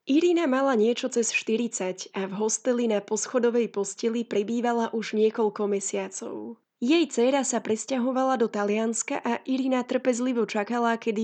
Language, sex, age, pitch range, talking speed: Slovak, female, 10-29, 210-240 Hz, 140 wpm